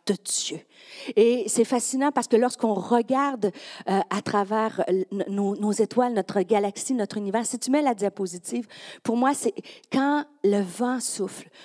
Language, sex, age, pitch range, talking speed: French, female, 50-69, 200-255 Hz, 165 wpm